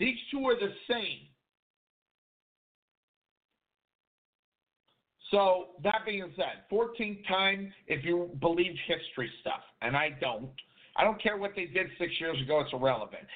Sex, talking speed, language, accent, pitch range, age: male, 135 wpm, English, American, 145-185 Hz, 50-69